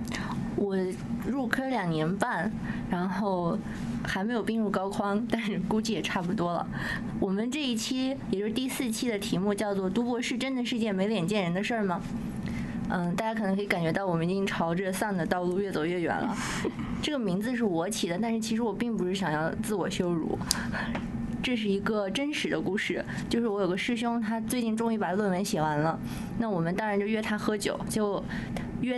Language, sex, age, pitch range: Chinese, female, 20-39, 195-225 Hz